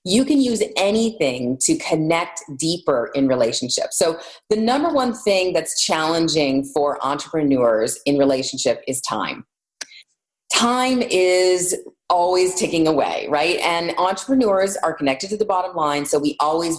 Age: 30-49